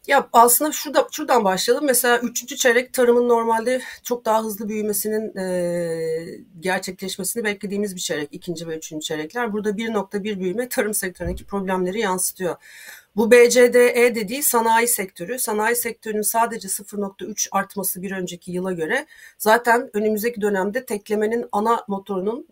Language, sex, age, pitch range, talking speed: Turkish, female, 40-59, 190-235 Hz, 135 wpm